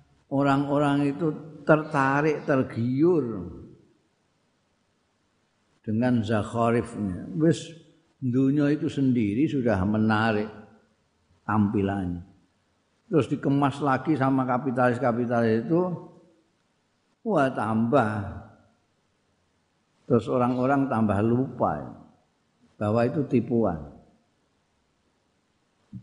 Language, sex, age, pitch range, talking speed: Indonesian, male, 50-69, 100-130 Hz, 65 wpm